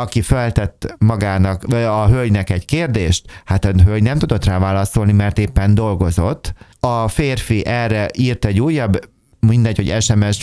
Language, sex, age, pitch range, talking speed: Hungarian, male, 30-49, 100-120 Hz, 150 wpm